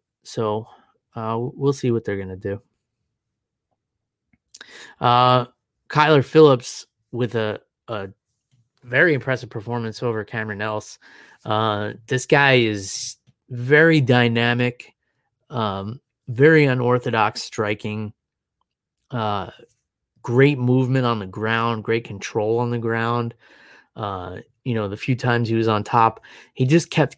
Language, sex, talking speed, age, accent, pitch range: English, male, 120 wpm, 30-49, American, 110-130 Hz